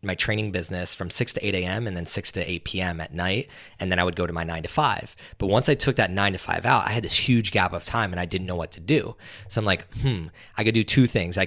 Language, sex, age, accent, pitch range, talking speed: English, male, 20-39, American, 90-110 Hz, 310 wpm